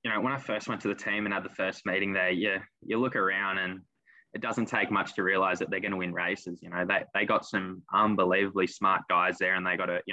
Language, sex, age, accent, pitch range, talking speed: English, male, 10-29, Australian, 95-105 Hz, 280 wpm